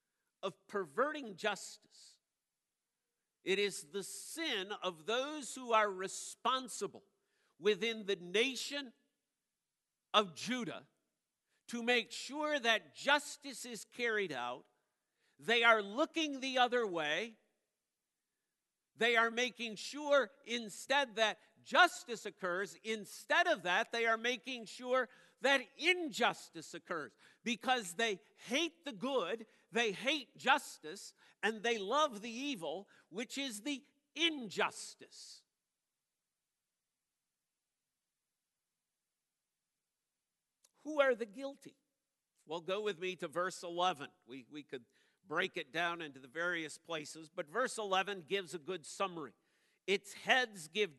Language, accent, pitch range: English, American, 195-265 Hz